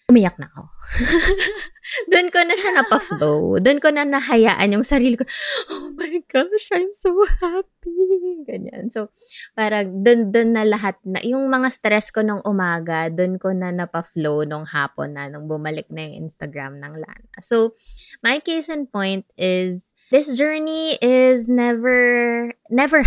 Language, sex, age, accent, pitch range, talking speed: English, female, 20-39, Filipino, 170-240 Hz, 160 wpm